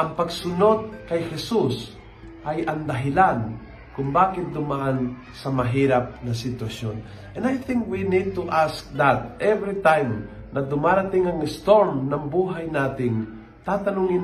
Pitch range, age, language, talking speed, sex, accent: 135-175 Hz, 50-69, Filipino, 135 wpm, male, native